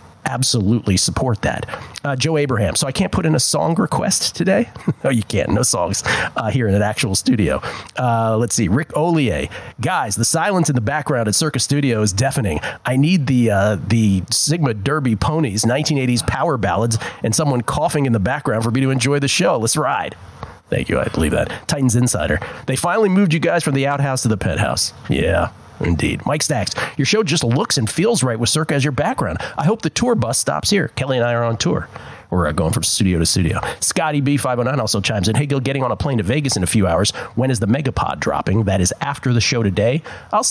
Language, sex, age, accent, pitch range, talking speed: English, male, 40-59, American, 105-140 Hz, 220 wpm